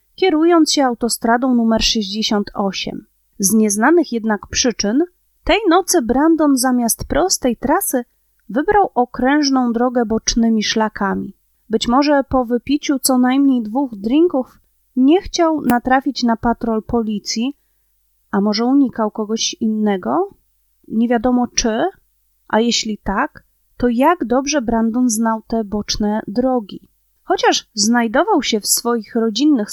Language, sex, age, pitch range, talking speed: Polish, female, 30-49, 225-290 Hz, 120 wpm